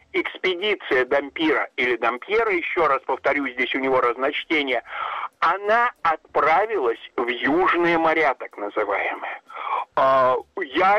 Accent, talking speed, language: native, 105 wpm, Russian